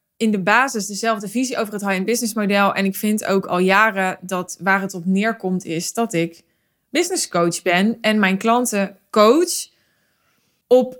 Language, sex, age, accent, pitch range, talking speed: Dutch, female, 20-39, Dutch, 190-230 Hz, 175 wpm